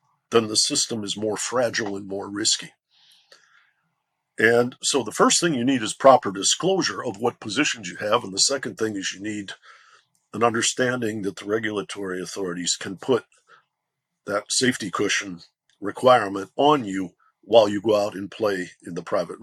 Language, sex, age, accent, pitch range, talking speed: English, male, 50-69, American, 100-135 Hz, 165 wpm